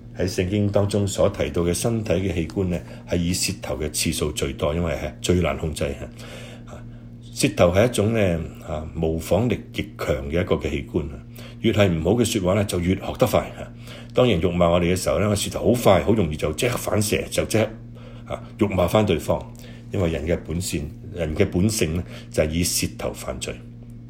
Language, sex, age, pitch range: Chinese, male, 60-79, 80-115 Hz